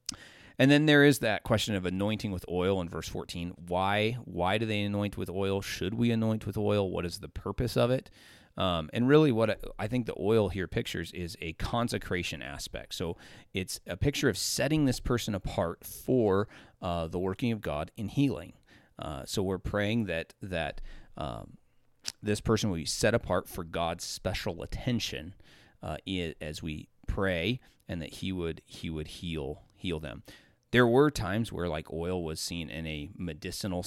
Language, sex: English, male